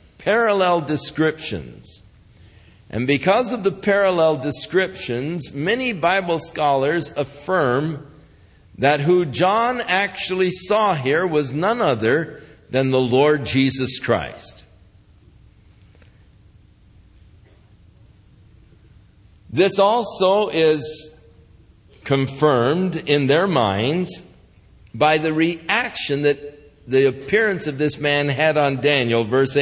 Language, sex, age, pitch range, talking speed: English, male, 50-69, 110-155 Hz, 95 wpm